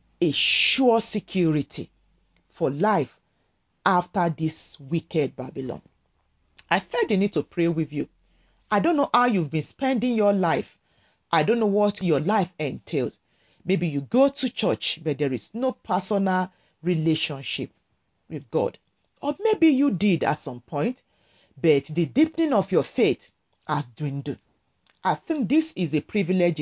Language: English